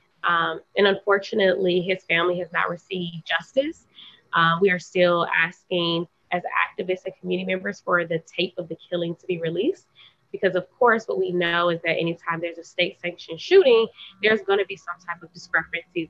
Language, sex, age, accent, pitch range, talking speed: English, female, 20-39, American, 170-195 Hz, 185 wpm